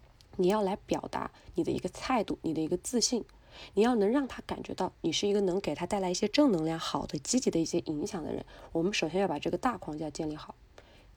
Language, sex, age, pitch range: Chinese, female, 20-39, 160-205 Hz